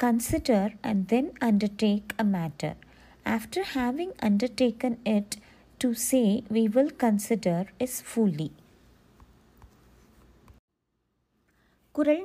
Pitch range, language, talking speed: 205-270 Hz, Tamil, 90 wpm